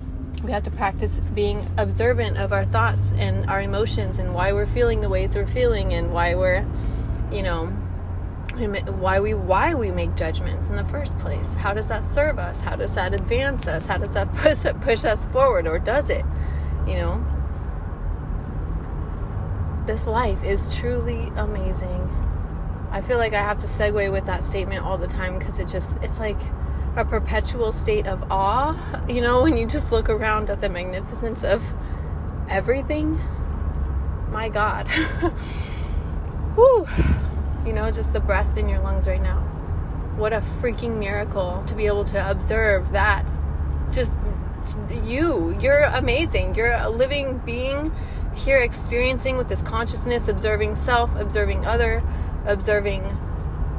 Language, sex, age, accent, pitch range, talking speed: English, female, 20-39, American, 75-95 Hz, 155 wpm